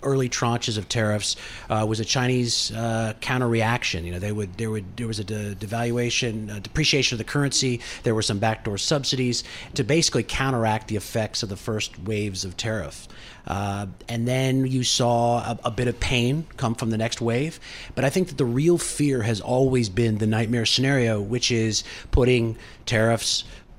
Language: English